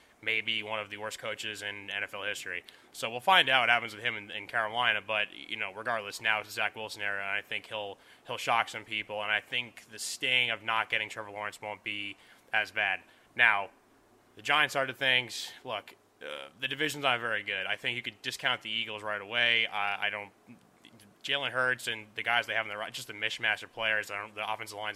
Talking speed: 235 wpm